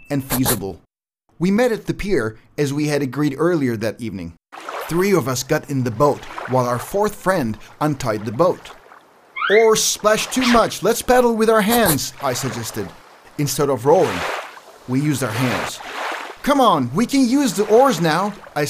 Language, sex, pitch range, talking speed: English, male, 125-180 Hz, 175 wpm